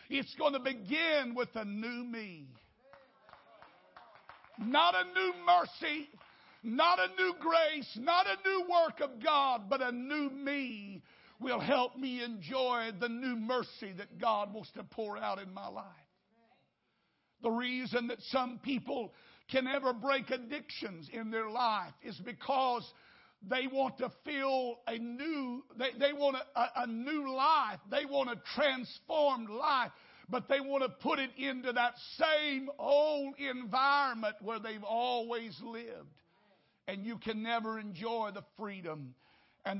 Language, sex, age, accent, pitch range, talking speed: English, male, 60-79, American, 220-275 Hz, 145 wpm